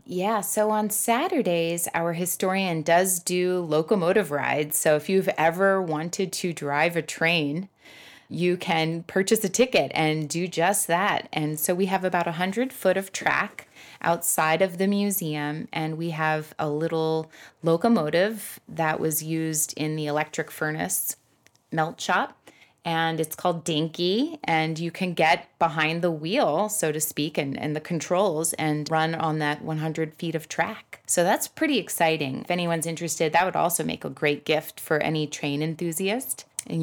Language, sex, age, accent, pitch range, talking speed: English, female, 20-39, American, 155-185 Hz, 165 wpm